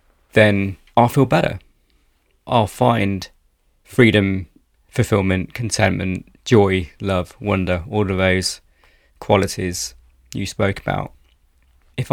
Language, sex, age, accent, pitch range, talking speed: English, male, 30-49, British, 85-110 Hz, 100 wpm